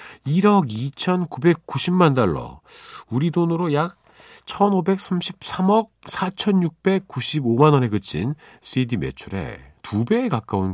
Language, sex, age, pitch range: Korean, male, 40-59, 105-150 Hz